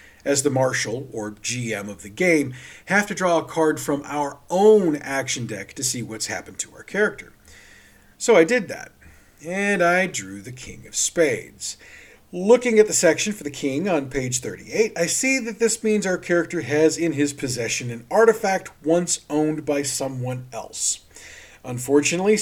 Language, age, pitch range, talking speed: English, 40-59, 125-195 Hz, 175 wpm